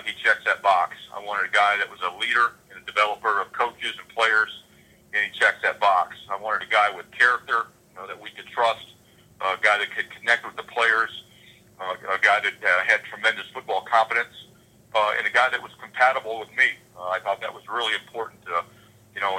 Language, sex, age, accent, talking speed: English, male, 40-59, American, 220 wpm